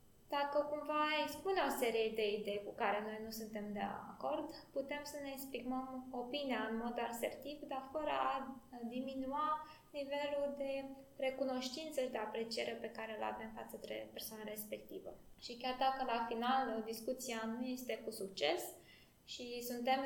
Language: Romanian